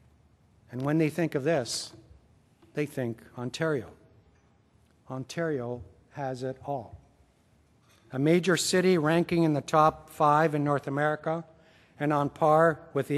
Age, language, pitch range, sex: 60-79, English, 135-165 Hz, male